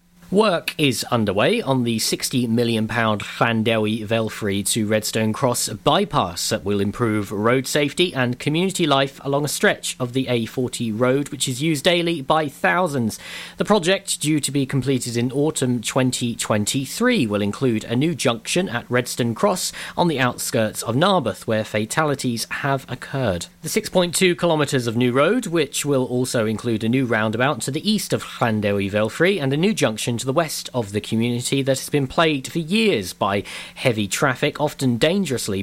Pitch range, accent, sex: 115-150 Hz, British, male